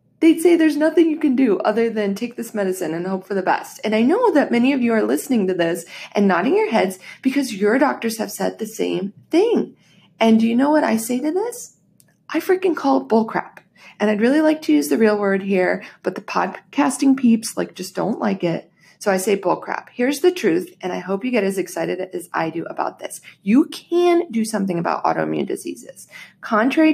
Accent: American